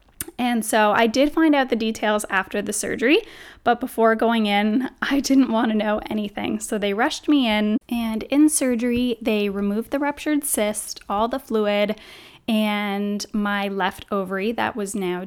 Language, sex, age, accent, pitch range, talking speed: English, female, 10-29, American, 205-250 Hz, 175 wpm